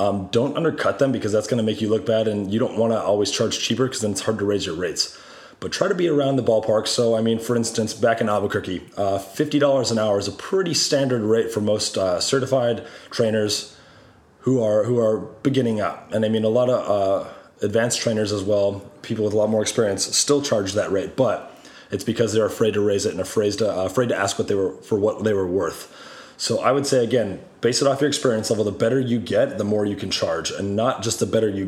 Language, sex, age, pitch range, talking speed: English, male, 30-49, 105-125 Hz, 250 wpm